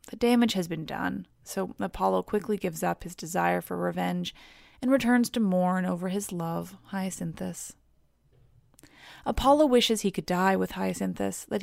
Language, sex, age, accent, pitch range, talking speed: English, female, 20-39, American, 175-220 Hz, 155 wpm